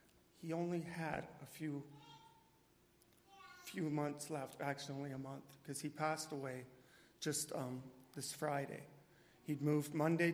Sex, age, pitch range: male, 40-59, 140-170 Hz